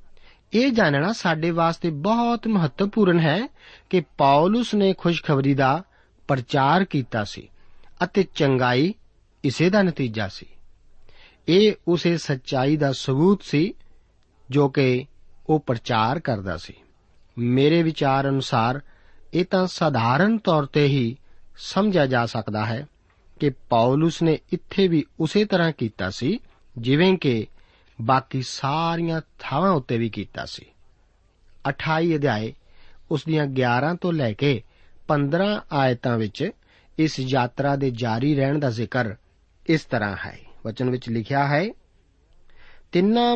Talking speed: 110 wpm